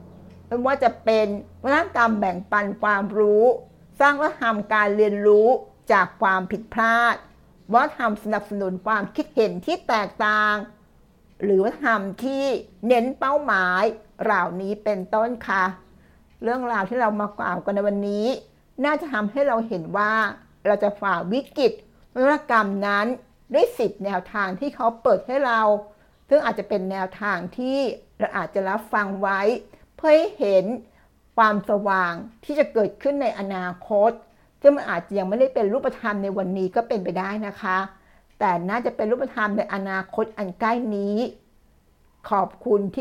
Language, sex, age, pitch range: Thai, female, 60-79, 200-235 Hz